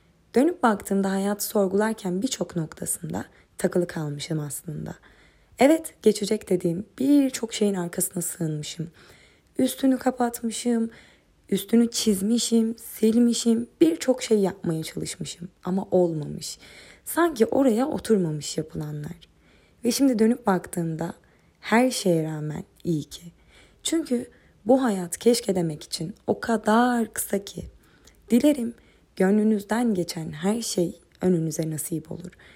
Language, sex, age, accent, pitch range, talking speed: Turkish, female, 20-39, native, 170-235 Hz, 105 wpm